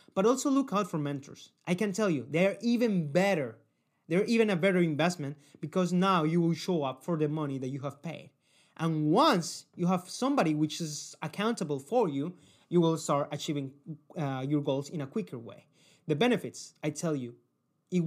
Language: English